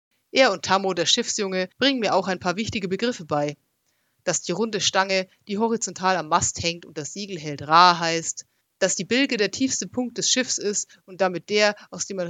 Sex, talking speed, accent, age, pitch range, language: female, 210 wpm, German, 30-49, 165-205 Hz, German